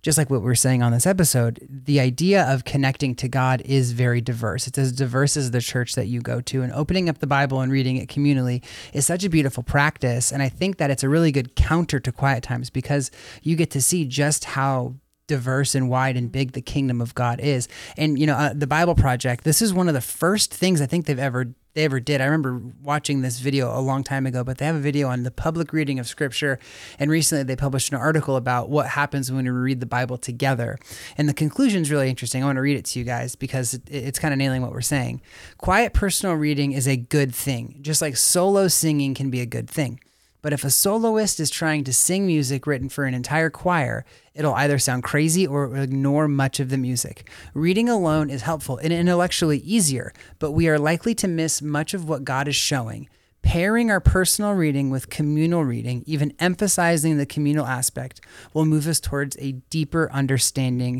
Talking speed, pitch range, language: 225 wpm, 130-155 Hz, English